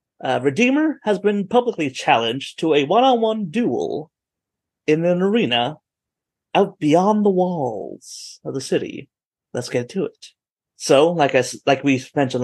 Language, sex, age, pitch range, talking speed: English, male, 30-49, 135-215 Hz, 145 wpm